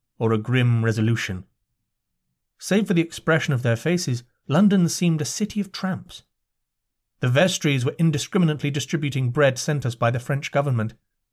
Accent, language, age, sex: British, English, 40-59, male